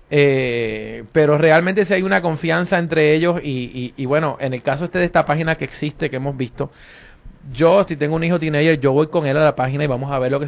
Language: Spanish